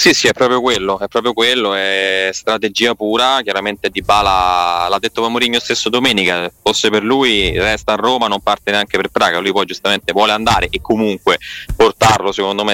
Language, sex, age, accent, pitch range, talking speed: Italian, male, 20-39, native, 95-110 Hz, 190 wpm